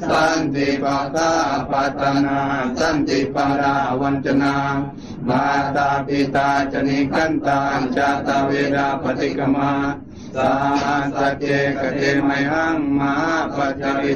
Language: Thai